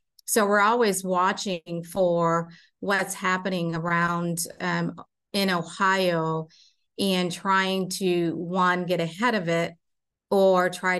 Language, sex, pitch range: English, female, 175-195 Hz